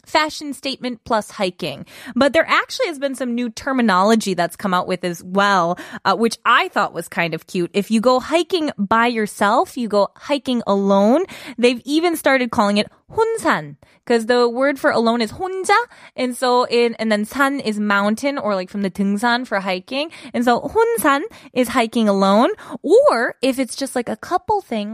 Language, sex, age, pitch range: Korean, female, 20-39, 200-285 Hz